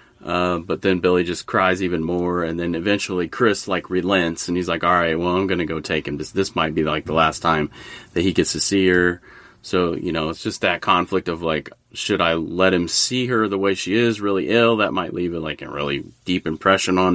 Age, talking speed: 30-49, 250 wpm